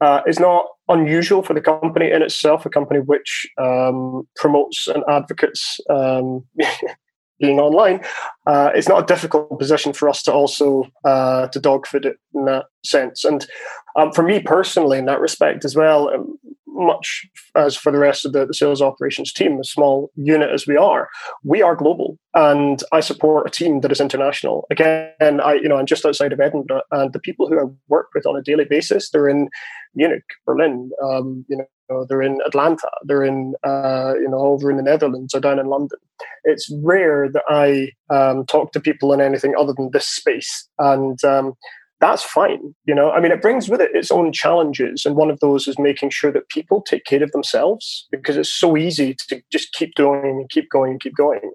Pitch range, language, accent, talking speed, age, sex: 135-155 Hz, English, British, 200 wpm, 20-39, male